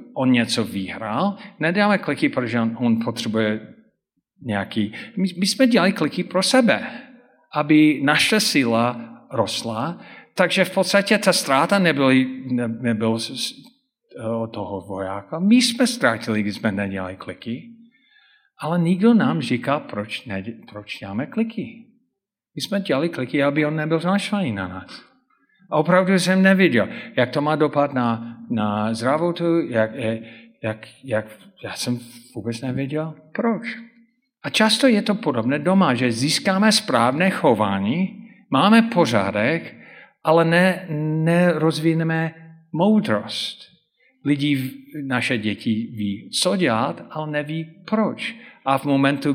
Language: Czech